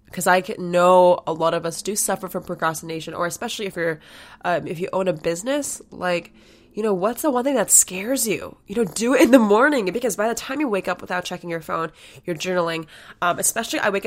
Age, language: 20-39, English